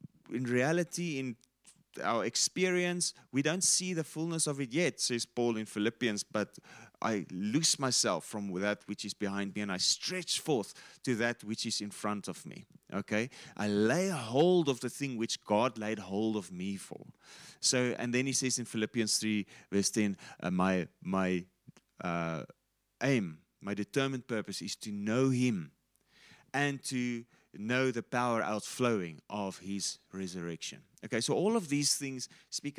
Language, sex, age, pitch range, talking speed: English, male, 30-49, 105-140 Hz, 165 wpm